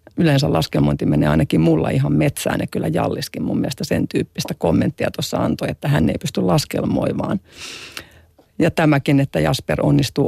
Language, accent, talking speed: Finnish, native, 160 wpm